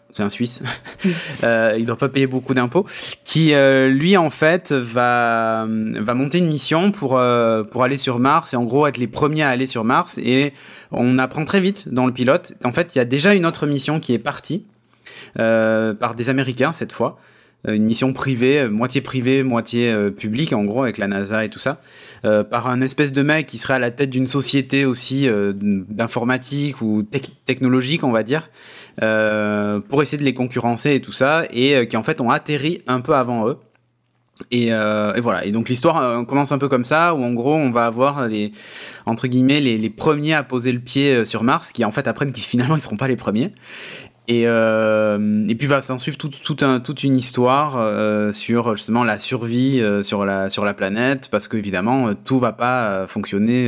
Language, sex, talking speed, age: French, male, 215 wpm, 20-39